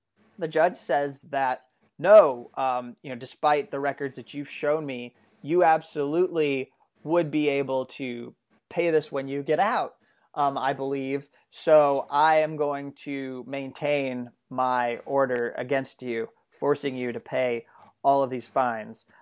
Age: 30-49